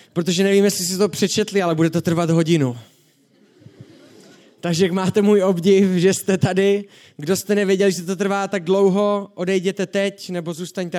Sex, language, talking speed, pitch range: male, Czech, 170 wpm, 155-195 Hz